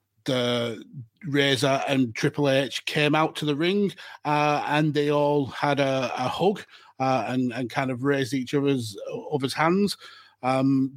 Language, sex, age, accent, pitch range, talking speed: English, male, 30-49, British, 130-150 Hz, 165 wpm